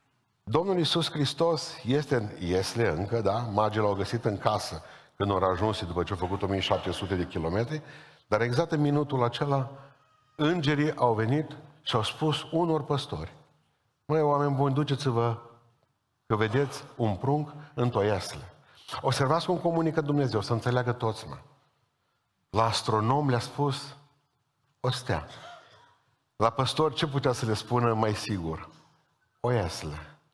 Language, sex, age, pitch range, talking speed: Romanian, male, 50-69, 105-145 Hz, 140 wpm